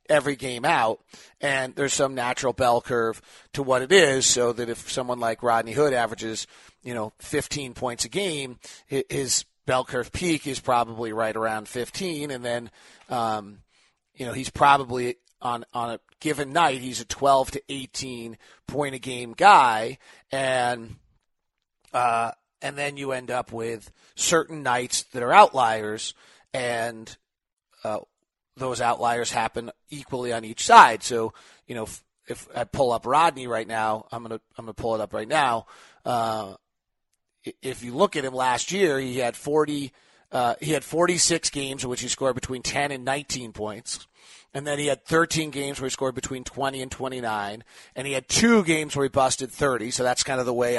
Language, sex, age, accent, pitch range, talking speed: English, male, 30-49, American, 120-145 Hz, 180 wpm